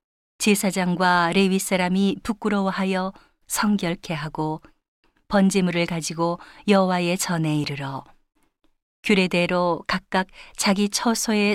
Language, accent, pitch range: Korean, native, 175-205 Hz